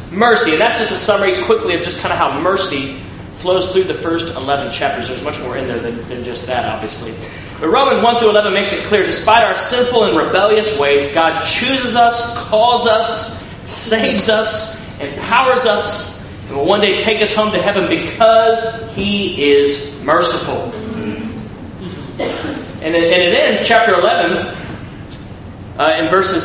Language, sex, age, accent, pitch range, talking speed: English, male, 30-49, American, 165-235 Hz, 170 wpm